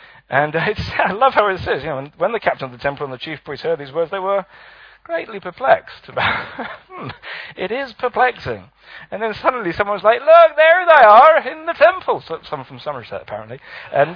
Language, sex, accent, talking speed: English, male, British, 210 wpm